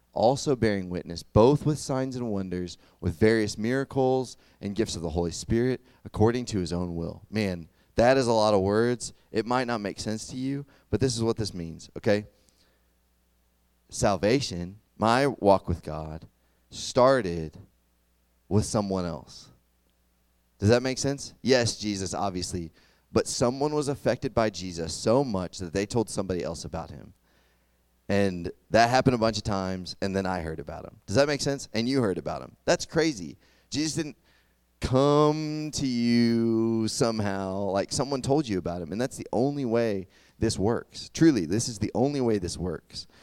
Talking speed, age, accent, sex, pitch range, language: 175 wpm, 30-49, American, male, 85-125 Hz, English